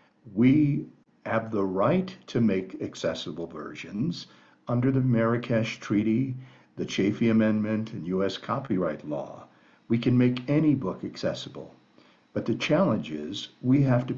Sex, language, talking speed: male, English, 135 wpm